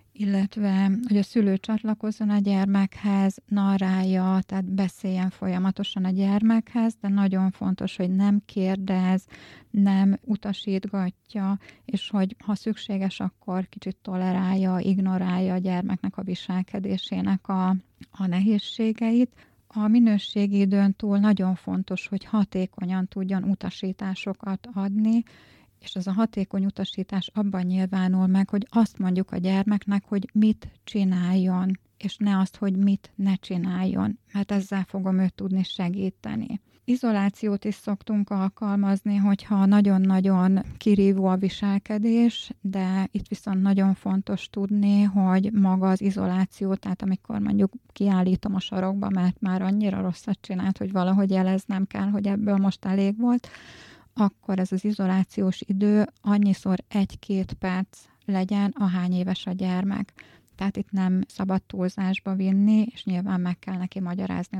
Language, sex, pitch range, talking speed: Hungarian, female, 190-205 Hz, 130 wpm